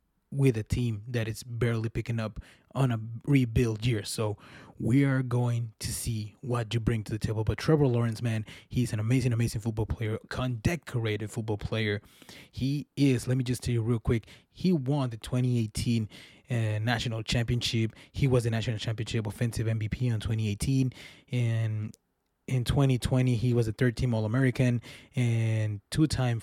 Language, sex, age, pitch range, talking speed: English, male, 20-39, 115-135 Hz, 165 wpm